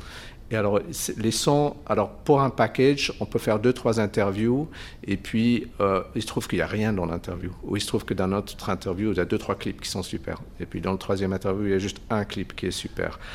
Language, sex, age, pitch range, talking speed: French, male, 50-69, 105-125 Hz, 250 wpm